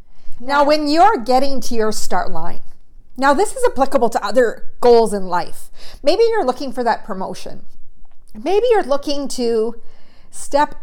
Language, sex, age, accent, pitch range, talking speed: English, female, 50-69, American, 225-290 Hz, 155 wpm